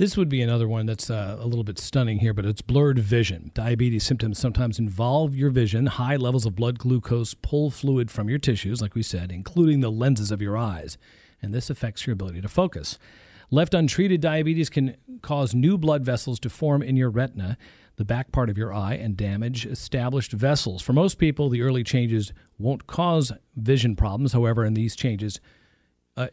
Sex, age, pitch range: male, 40-59, 110-145 Hz